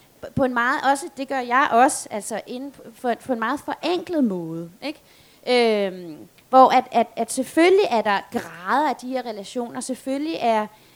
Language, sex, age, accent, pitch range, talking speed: Danish, female, 30-49, native, 230-295 Hz, 170 wpm